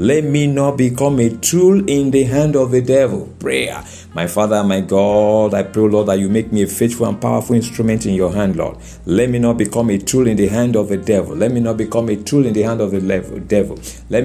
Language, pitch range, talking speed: English, 105-145 Hz, 245 wpm